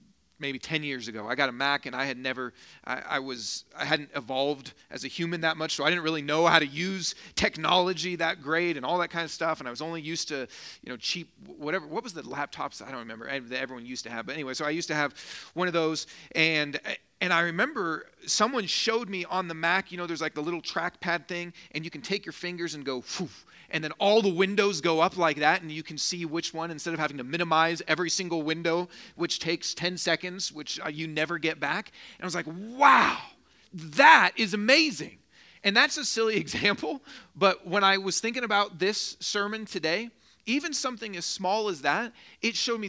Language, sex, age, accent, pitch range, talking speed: English, male, 40-59, American, 160-210 Hz, 225 wpm